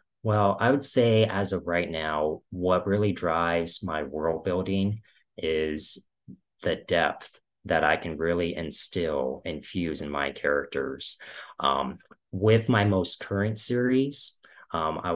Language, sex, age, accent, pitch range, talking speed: English, male, 30-49, American, 75-100 Hz, 140 wpm